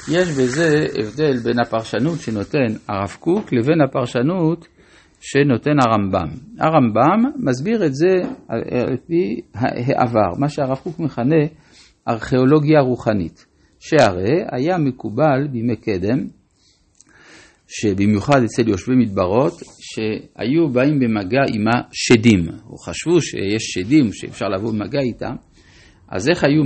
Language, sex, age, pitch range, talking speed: Hebrew, male, 50-69, 110-150 Hz, 115 wpm